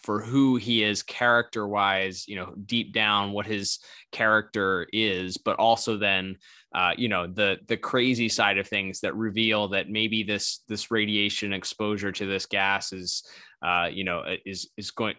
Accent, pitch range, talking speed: American, 95-110 Hz, 170 wpm